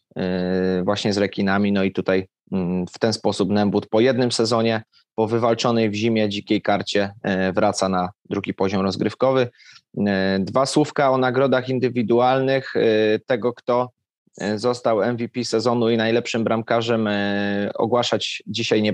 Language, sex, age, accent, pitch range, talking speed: Polish, male, 20-39, native, 105-120 Hz, 125 wpm